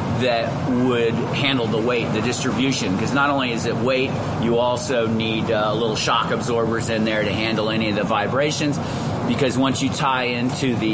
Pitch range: 115-135 Hz